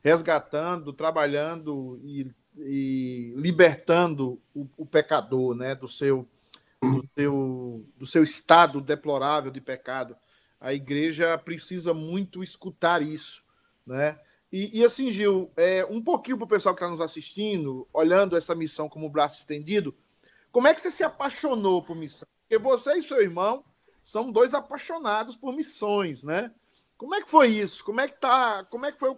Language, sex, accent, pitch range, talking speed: Portuguese, male, Brazilian, 155-220 Hz, 160 wpm